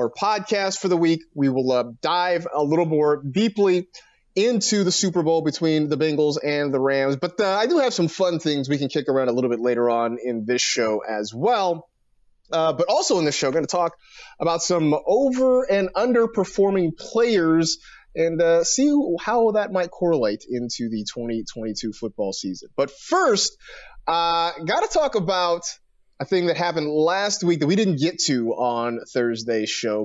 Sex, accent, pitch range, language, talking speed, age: male, American, 130-185 Hz, English, 185 wpm, 30-49